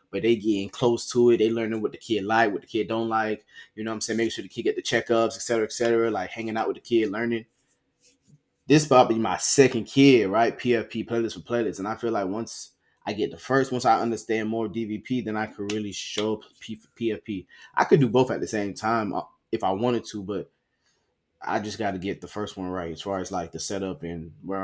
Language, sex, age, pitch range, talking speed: English, male, 20-39, 95-115 Hz, 245 wpm